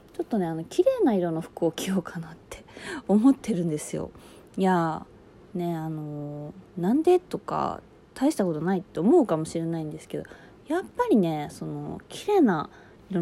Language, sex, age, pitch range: Japanese, female, 20-39, 165-230 Hz